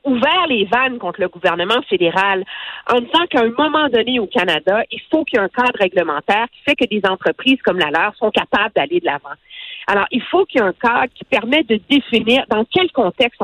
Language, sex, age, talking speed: French, female, 50-69, 230 wpm